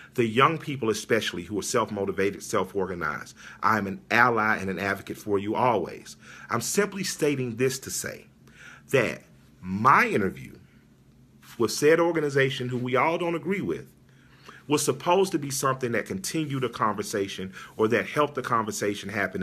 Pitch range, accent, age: 100-140 Hz, American, 40-59